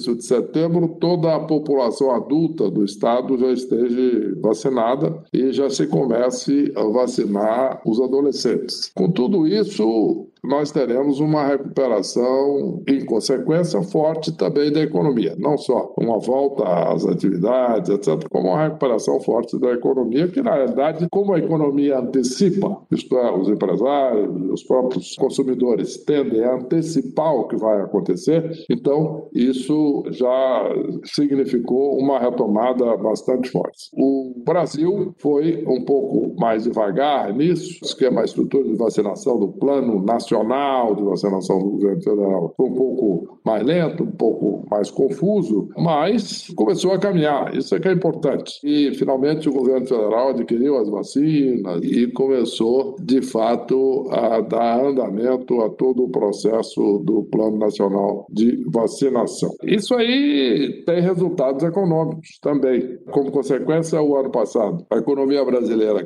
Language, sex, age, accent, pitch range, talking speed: Portuguese, male, 60-79, Brazilian, 125-155 Hz, 135 wpm